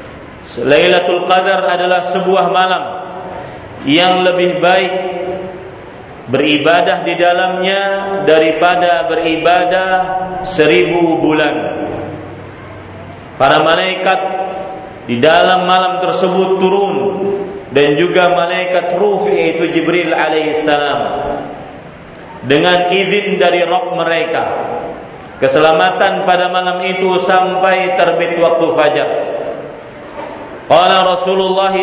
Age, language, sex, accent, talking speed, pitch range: 40-59, Indonesian, male, native, 80 wpm, 170-185 Hz